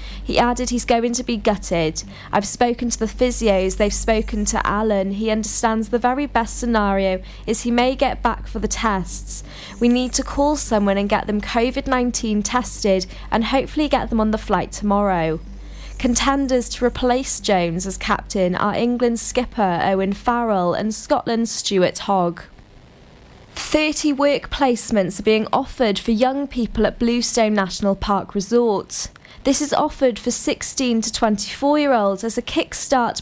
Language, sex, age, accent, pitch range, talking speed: English, female, 20-39, British, 200-245 Hz, 160 wpm